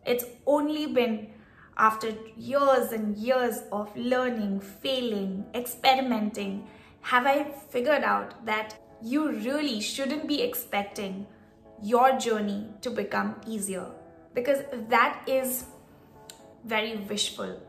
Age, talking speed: 20-39, 105 wpm